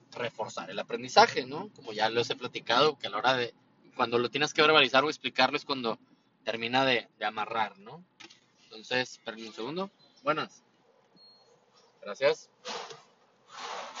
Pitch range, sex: 120-170 Hz, male